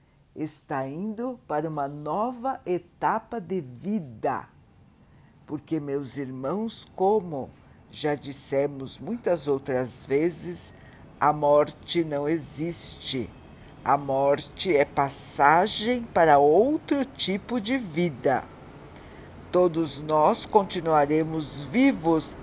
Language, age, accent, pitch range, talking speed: Portuguese, 60-79, Brazilian, 145-205 Hz, 90 wpm